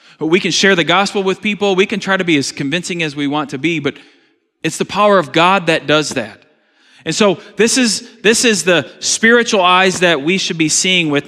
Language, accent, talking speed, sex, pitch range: English, American, 230 wpm, male, 165-230 Hz